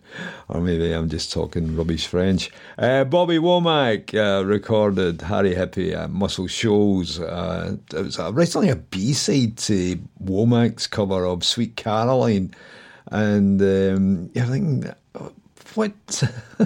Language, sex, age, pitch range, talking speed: English, male, 50-69, 90-115 Hz, 120 wpm